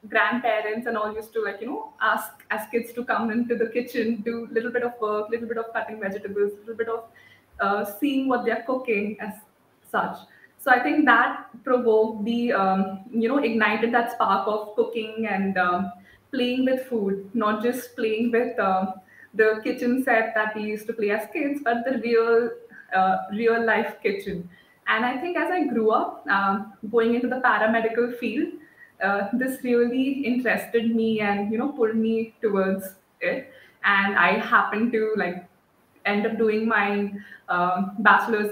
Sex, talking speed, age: female, 180 wpm, 20-39